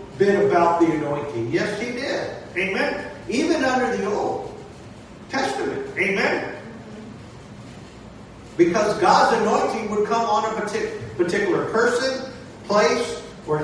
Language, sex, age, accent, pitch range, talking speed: English, male, 50-69, American, 155-210 Hz, 115 wpm